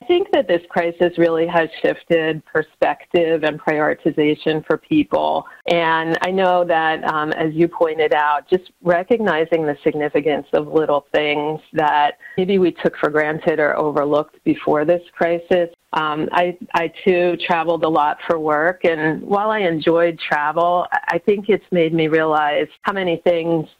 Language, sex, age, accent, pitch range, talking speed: English, female, 40-59, American, 155-175 Hz, 160 wpm